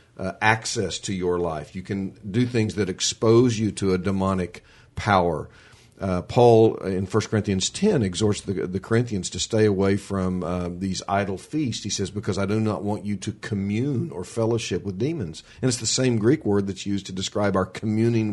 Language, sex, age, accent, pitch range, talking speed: English, male, 50-69, American, 95-115 Hz, 195 wpm